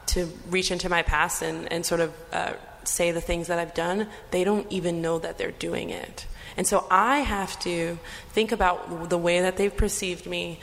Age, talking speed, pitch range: 20-39, 210 wpm, 170-200 Hz